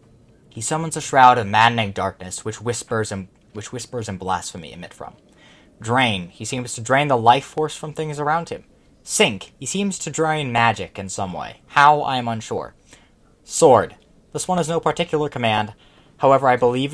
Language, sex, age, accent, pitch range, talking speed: English, male, 20-39, American, 110-140 Hz, 180 wpm